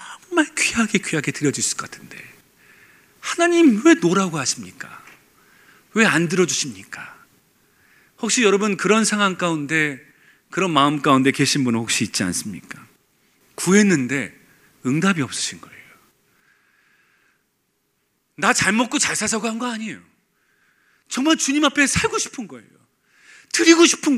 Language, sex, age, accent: Korean, male, 40-59, native